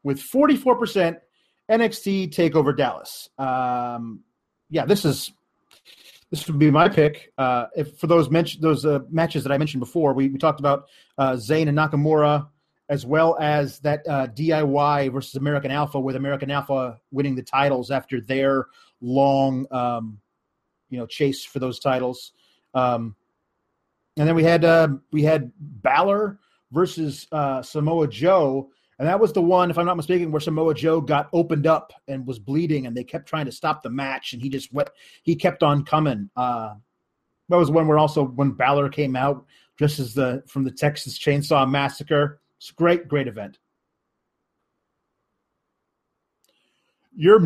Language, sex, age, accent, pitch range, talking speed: English, male, 30-49, American, 135-165 Hz, 165 wpm